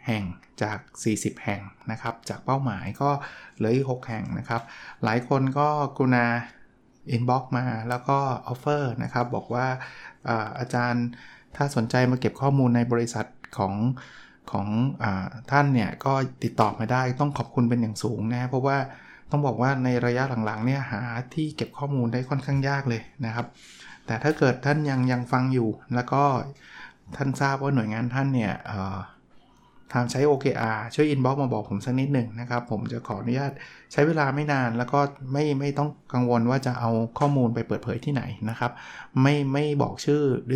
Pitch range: 115-135 Hz